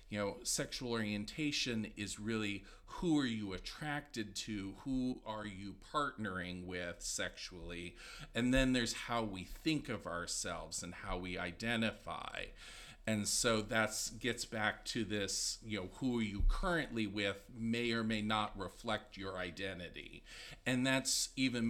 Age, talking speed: 50-69, 145 wpm